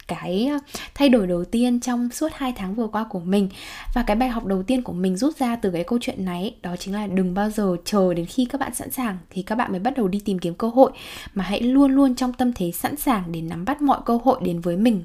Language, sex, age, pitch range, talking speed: Vietnamese, female, 10-29, 185-255 Hz, 285 wpm